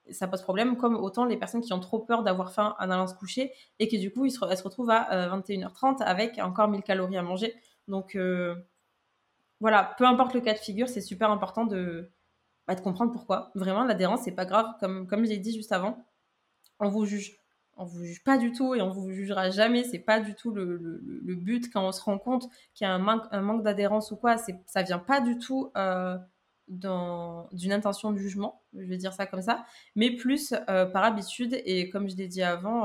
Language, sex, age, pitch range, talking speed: French, female, 20-39, 185-225 Hz, 235 wpm